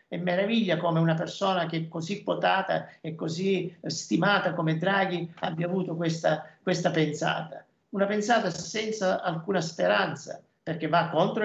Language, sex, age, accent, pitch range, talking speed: Italian, male, 50-69, native, 165-200 Hz, 140 wpm